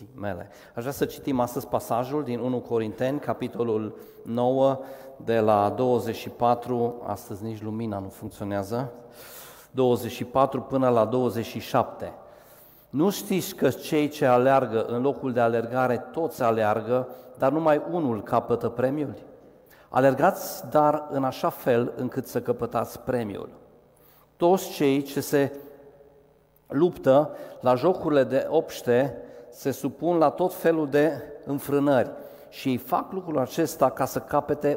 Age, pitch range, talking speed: 40-59, 120-145 Hz, 130 wpm